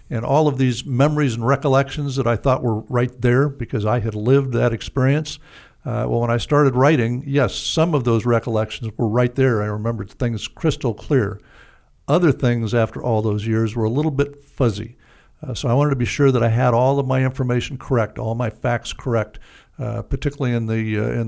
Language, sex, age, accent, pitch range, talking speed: English, male, 60-79, American, 115-135 Hz, 205 wpm